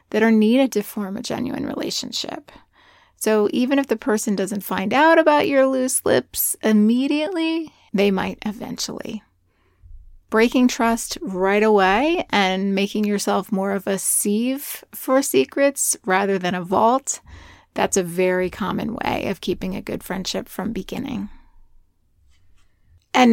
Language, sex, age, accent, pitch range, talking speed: English, female, 30-49, American, 195-260 Hz, 140 wpm